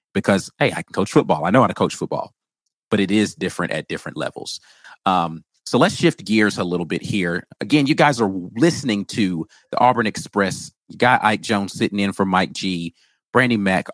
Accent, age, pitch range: American, 30-49, 95-115 Hz